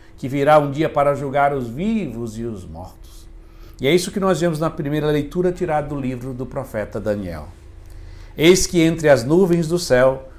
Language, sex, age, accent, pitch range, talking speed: Portuguese, male, 60-79, Brazilian, 100-150 Hz, 190 wpm